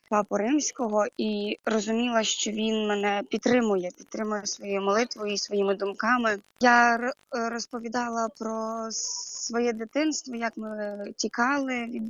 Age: 20-39